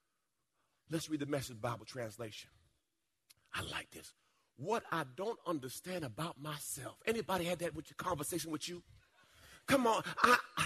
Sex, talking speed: male, 145 wpm